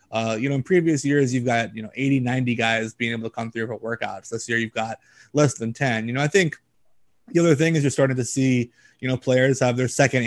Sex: male